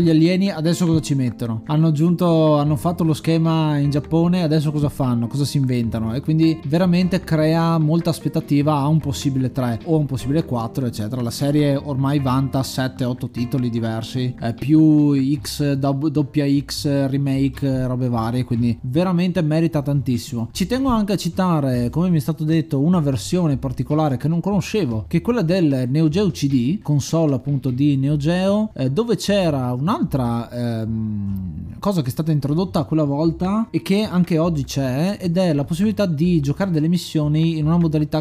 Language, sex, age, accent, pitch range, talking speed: Italian, male, 20-39, native, 130-165 Hz, 175 wpm